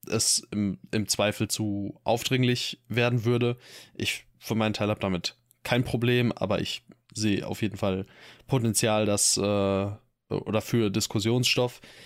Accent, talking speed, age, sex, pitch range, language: German, 140 wpm, 20-39, male, 105-125 Hz, German